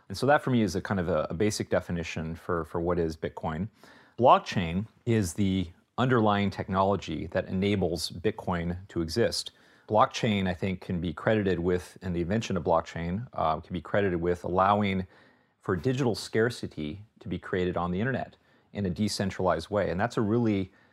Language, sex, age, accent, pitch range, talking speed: English, male, 40-59, American, 90-105 Hz, 180 wpm